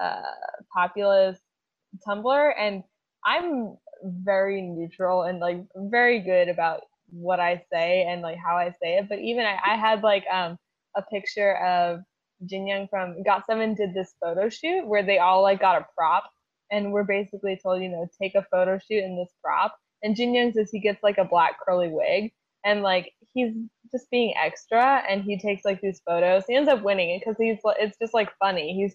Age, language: 10-29, English